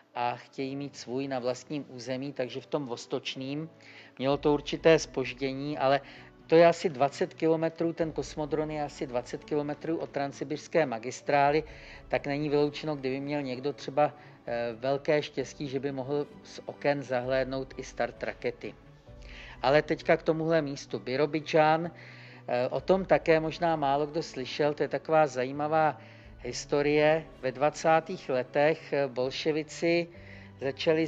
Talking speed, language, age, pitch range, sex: 135 wpm, Czech, 50-69, 135-155 Hz, male